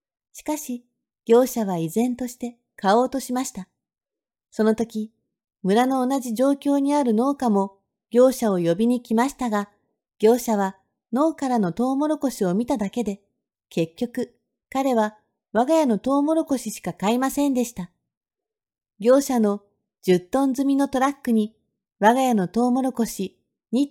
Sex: female